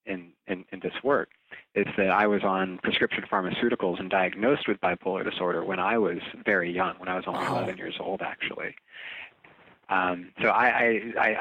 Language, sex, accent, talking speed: English, male, American, 180 wpm